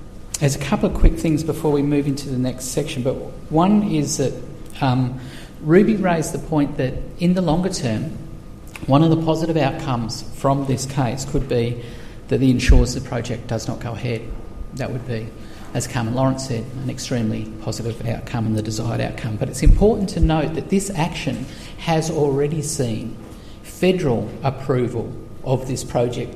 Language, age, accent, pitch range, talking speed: English, 50-69, Australian, 115-145 Hz, 175 wpm